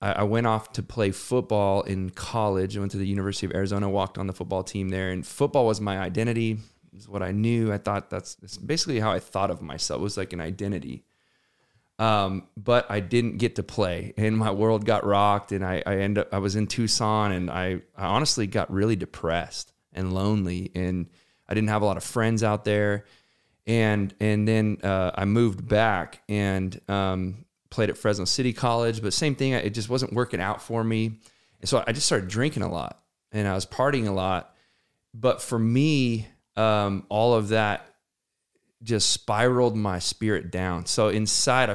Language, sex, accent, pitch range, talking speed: English, male, American, 95-115 Hz, 195 wpm